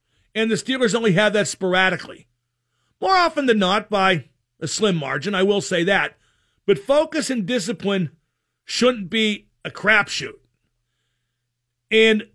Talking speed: 135 wpm